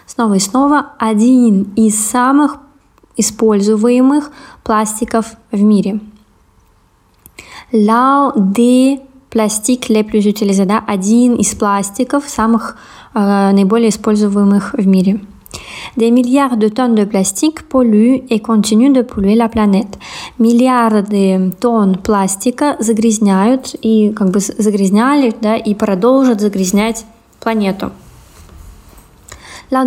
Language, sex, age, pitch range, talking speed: Russian, female, 20-39, 205-245 Hz, 100 wpm